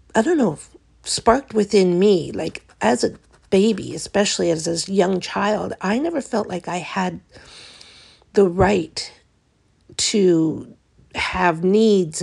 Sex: female